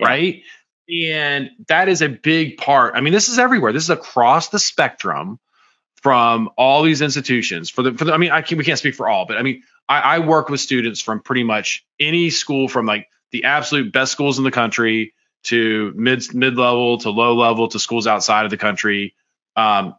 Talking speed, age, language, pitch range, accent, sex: 205 wpm, 20-39, English, 115-150 Hz, American, male